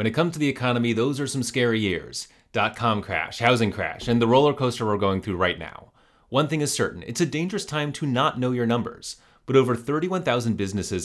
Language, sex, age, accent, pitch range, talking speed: English, male, 30-49, American, 105-135 Hz, 225 wpm